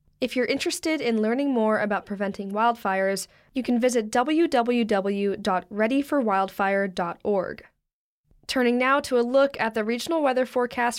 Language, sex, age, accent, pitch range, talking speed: English, female, 10-29, American, 205-255 Hz, 125 wpm